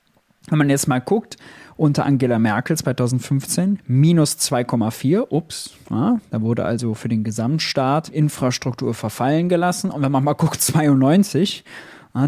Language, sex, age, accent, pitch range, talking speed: German, male, 20-39, German, 125-160 Hz, 130 wpm